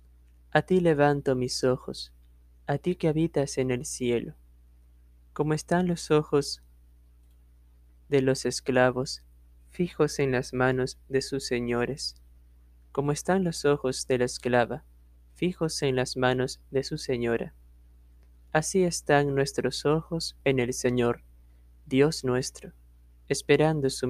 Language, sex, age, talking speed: Spanish, male, 20-39, 125 wpm